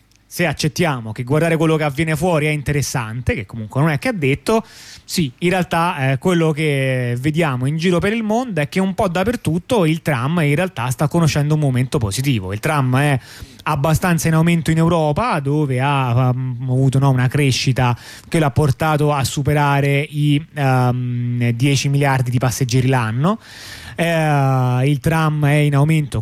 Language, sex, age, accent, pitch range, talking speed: Italian, male, 30-49, native, 125-160 Hz, 170 wpm